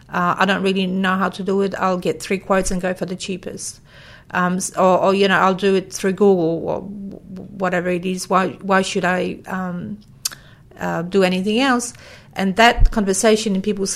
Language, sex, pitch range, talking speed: English, female, 180-200 Hz, 200 wpm